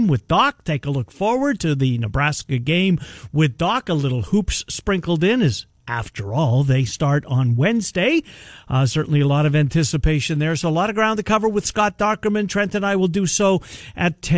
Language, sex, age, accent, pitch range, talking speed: English, male, 50-69, American, 135-190 Hz, 200 wpm